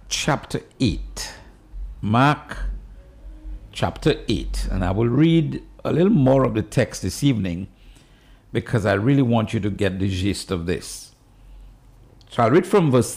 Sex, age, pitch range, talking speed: male, 60-79, 100-135 Hz, 150 wpm